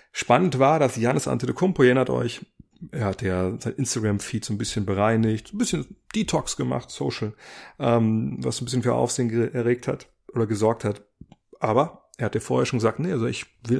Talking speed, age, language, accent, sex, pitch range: 185 wpm, 30-49, German, German, male, 105-125 Hz